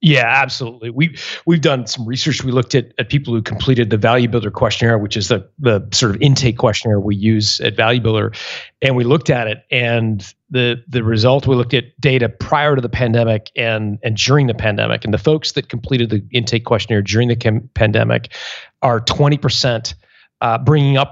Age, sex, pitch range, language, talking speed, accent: 40-59, male, 115-135 Hz, English, 200 wpm, American